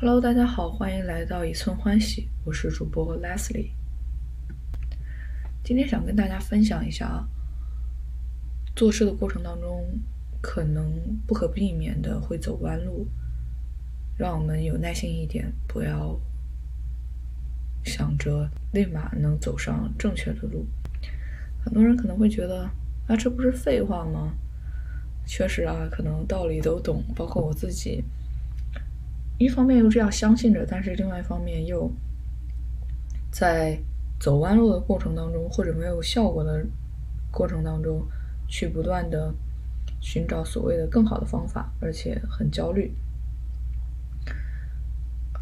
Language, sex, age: Chinese, female, 20-39